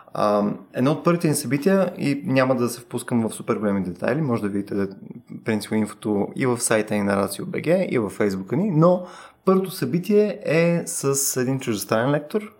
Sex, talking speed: male, 180 wpm